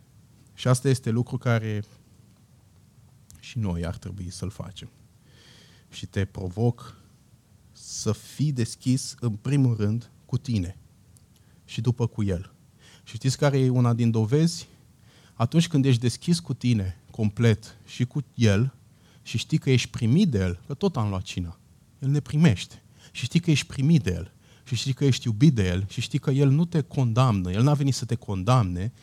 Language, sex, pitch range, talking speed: Romanian, male, 110-140 Hz, 180 wpm